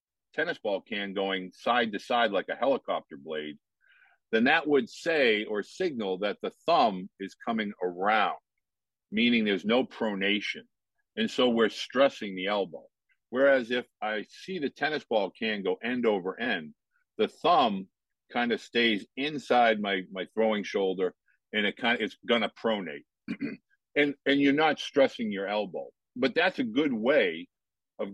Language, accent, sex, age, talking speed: English, American, male, 50-69, 160 wpm